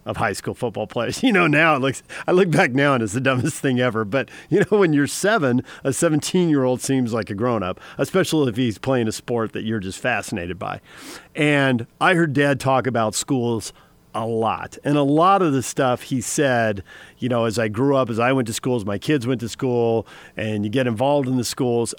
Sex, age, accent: male, 40-59, American